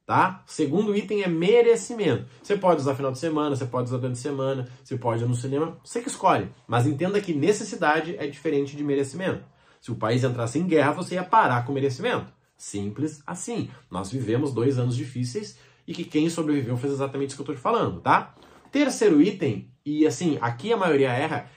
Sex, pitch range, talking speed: male, 130-185 Hz, 200 wpm